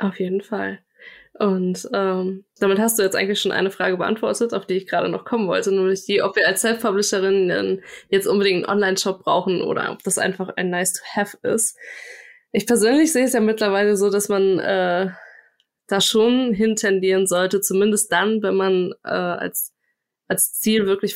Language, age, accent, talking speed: German, 20-39, German, 180 wpm